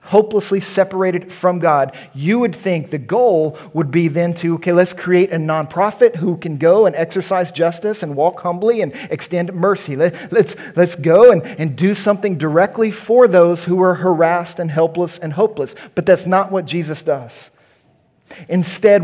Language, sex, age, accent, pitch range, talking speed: English, male, 40-59, American, 150-185 Hz, 170 wpm